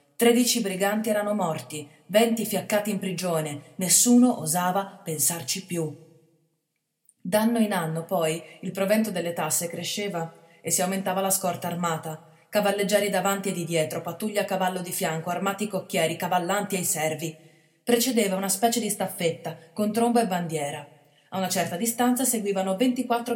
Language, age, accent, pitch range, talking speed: Italian, 30-49, native, 160-210 Hz, 145 wpm